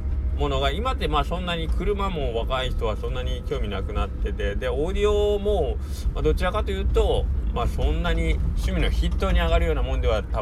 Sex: male